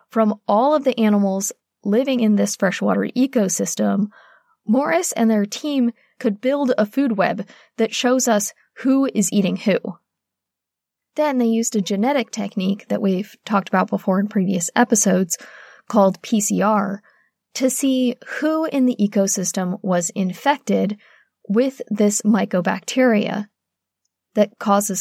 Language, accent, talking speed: English, American, 130 wpm